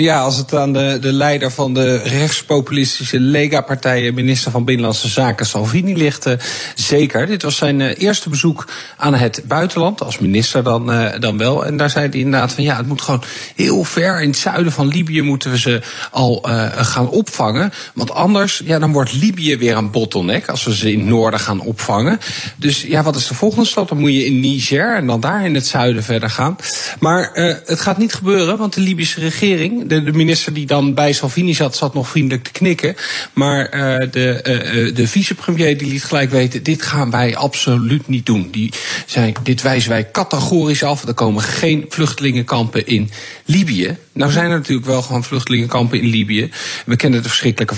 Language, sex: Dutch, male